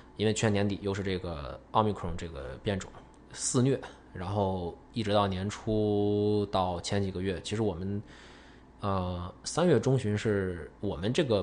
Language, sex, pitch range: Chinese, male, 95-110 Hz